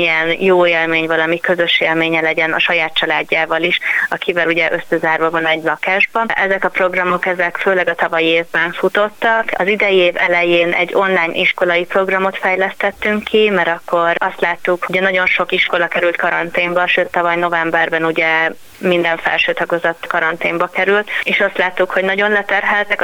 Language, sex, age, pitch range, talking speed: Hungarian, female, 20-39, 165-185 Hz, 160 wpm